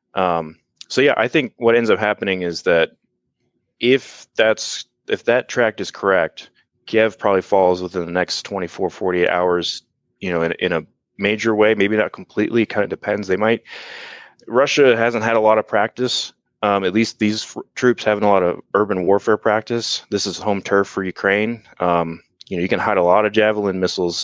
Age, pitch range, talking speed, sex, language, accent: 30-49, 90-110 Hz, 195 wpm, male, English, American